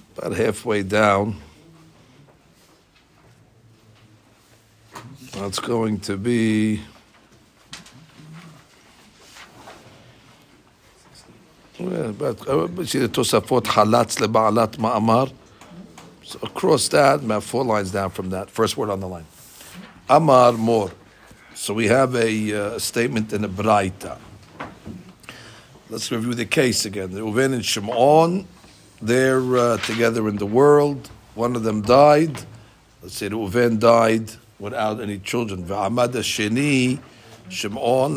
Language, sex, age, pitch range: English, male, 60-79, 105-125 Hz